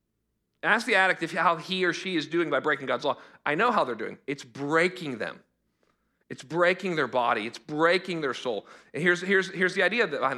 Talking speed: 215 wpm